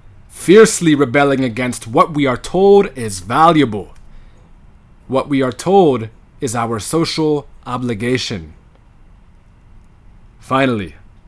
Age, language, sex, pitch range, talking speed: 30-49, English, male, 100-155 Hz, 95 wpm